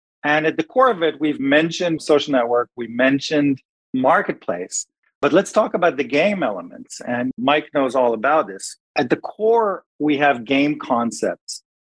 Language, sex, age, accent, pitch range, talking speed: English, male, 40-59, American, 135-170 Hz, 165 wpm